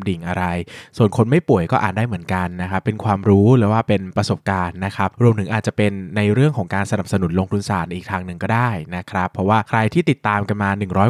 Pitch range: 95-120 Hz